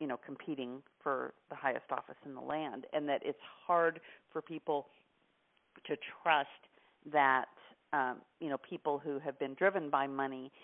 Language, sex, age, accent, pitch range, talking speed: English, female, 40-59, American, 140-175 Hz, 165 wpm